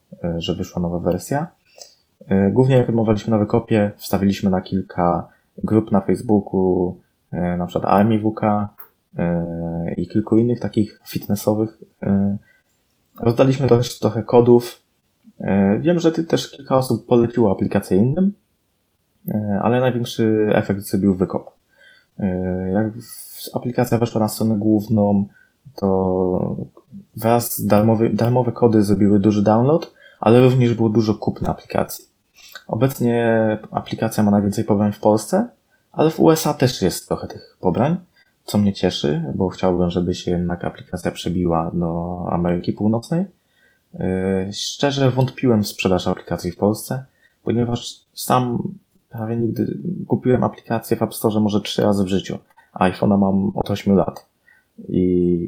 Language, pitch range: Polish, 95-120 Hz